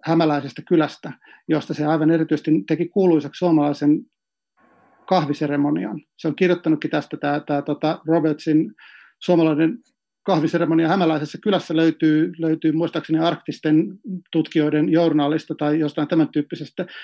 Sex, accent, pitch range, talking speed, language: male, native, 150-170 Hz, 105 wpm, Finnish